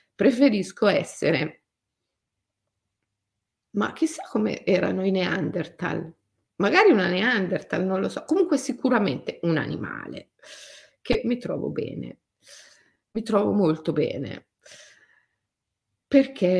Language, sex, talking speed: Italian, female, 100 wpm